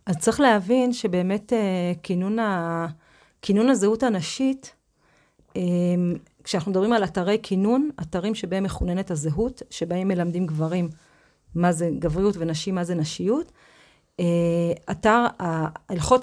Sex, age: female, 30-49